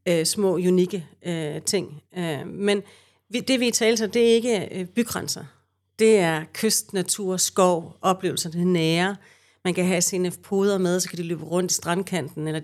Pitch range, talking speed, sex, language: 165-200 Hz, 190 wpm, female, Danish